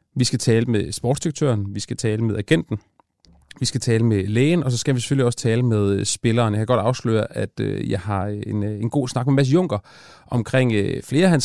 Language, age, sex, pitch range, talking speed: Danish, 30-49, male, 105-145 Hz, 215 wpm